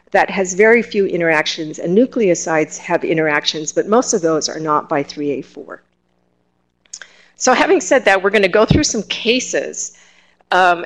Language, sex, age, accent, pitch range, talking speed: English, female, 50-69, American, 165-215 Hz, 160 wpm